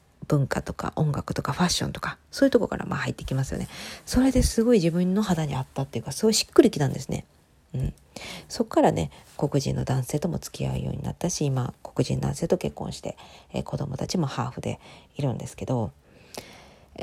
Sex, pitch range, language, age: female, 145-210 Hz, Japanese, 40-59